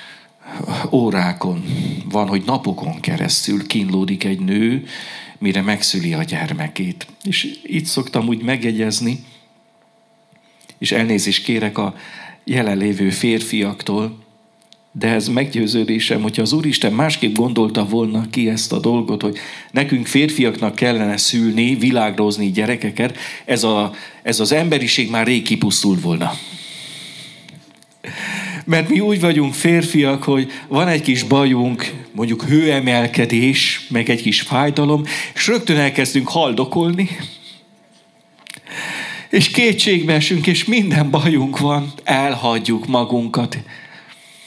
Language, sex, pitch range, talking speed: Hungarian, male, 110-165 Hz, 105 wpm